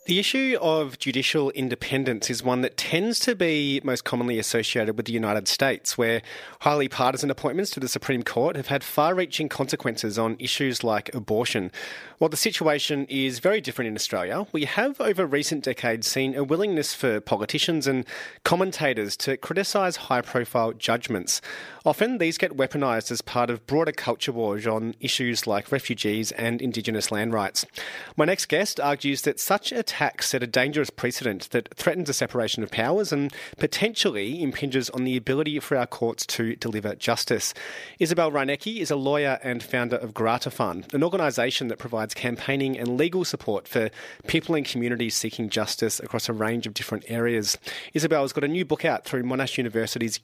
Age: 30-49